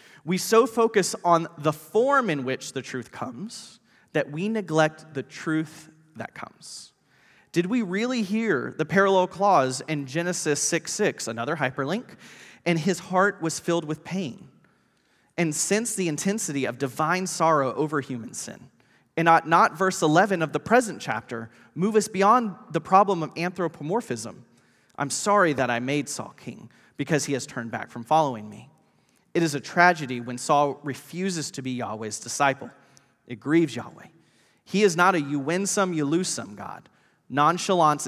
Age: 30-49